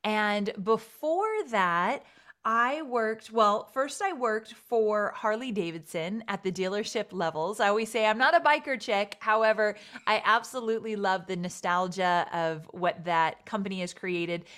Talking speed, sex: 150 wpm, female